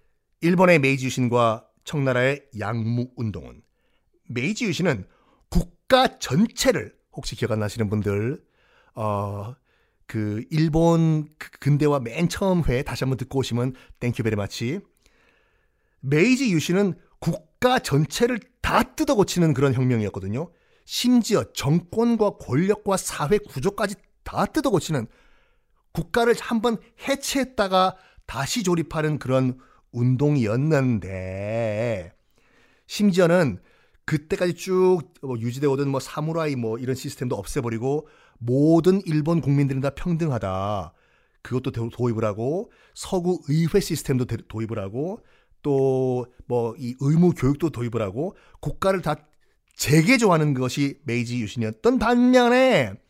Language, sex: Korean, male